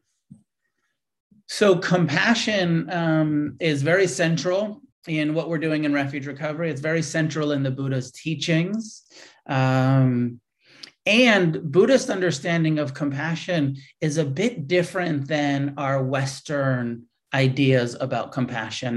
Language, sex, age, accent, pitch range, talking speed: English, male, 30-49, American, 130-155 Hz, 115 wpm